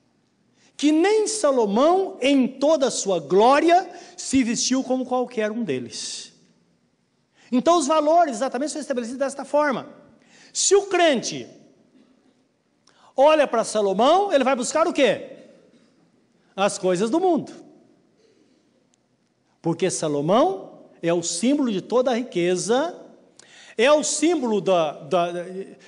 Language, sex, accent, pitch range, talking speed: Portuguese, male, Brazilian, 195-290 Hz, 115 wpm